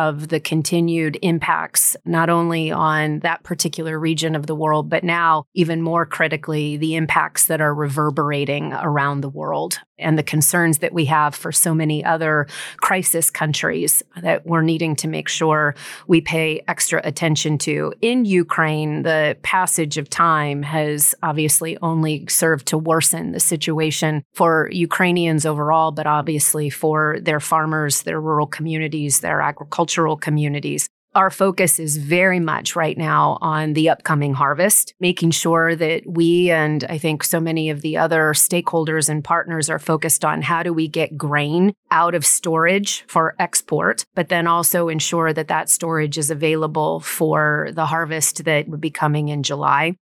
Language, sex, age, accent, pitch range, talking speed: English, female, 30-49, American, 155-165 Hz, 160 wpm